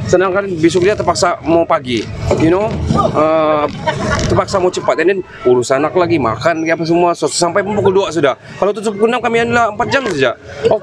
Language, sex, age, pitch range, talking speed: Malay, male, 30-49, 140-195 Hz, 200 wpm